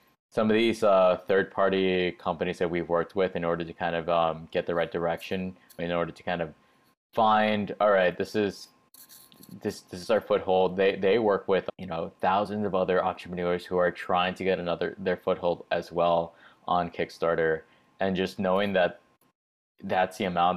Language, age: English, 20-39